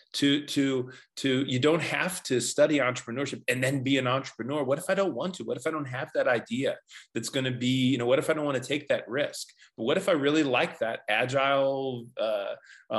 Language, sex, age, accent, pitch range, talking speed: English, male, 30-49, American, 110-135 Hz, 245 wpm